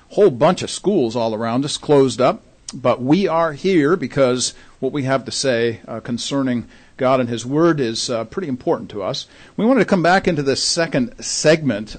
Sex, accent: male, American